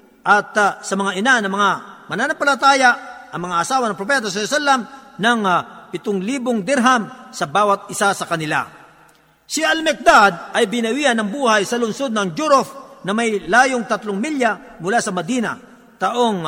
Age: 50-69